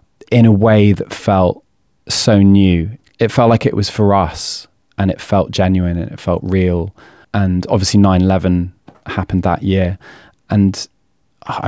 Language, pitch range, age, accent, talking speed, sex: English, 90-100 Hz, 20-39, British, 155 wpm, male